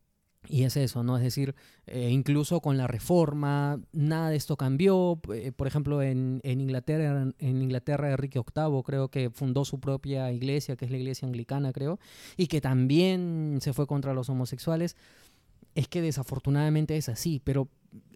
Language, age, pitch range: Spanish, 20-39, 130-160 Hz